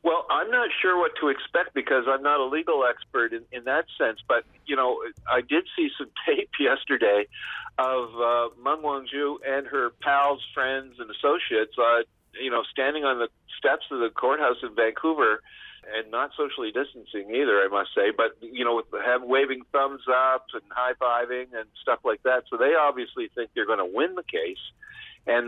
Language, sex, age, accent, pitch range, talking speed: English, male, 50-69, American, 115-140 Hz, 190 wpm